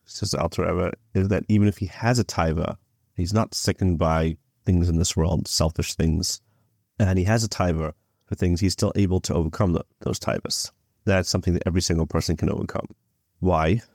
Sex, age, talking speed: male, 30-49, 190 wpm